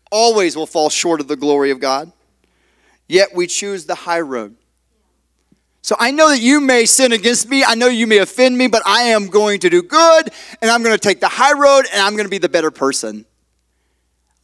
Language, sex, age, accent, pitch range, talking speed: English, male, 30-49, American, 180-255 Hz, 225 wpm